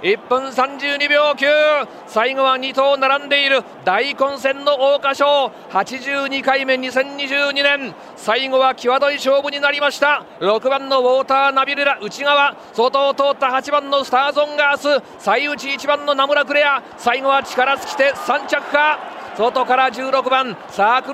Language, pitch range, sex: Japanese, 245-275 Hz, male